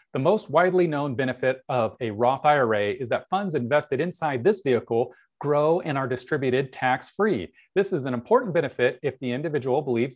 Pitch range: 115-150 Hz